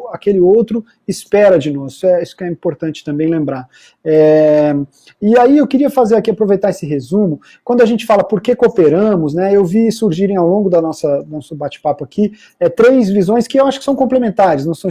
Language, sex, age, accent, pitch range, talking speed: Portuguese, male, 40-59, Brazilian, 155-200 Hz, 210 wpm